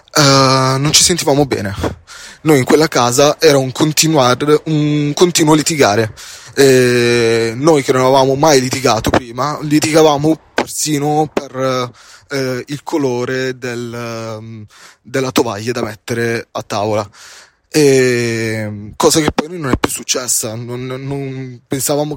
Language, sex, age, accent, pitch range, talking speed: Italian, male, 20-39, native, 120-145 Hz, 130 wpm